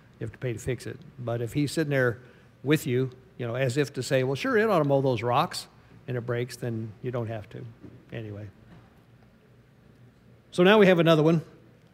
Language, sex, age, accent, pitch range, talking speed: English, male, 50-69, American, 125-160 Hz, 215 wpm